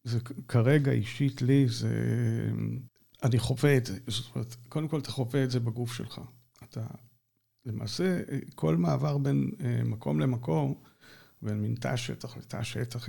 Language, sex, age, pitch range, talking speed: Hebrew, male, 50-69, 115-145 Hz, 140 wpm